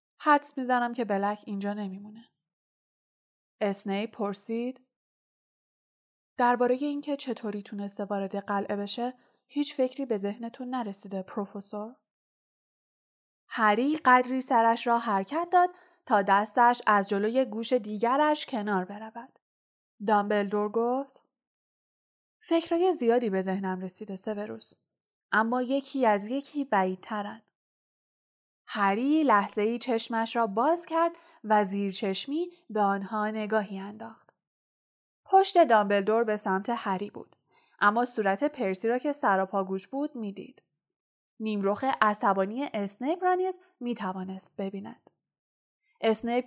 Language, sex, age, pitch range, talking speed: Persian, female, 20-39, 200-255 Hz, 110 wpm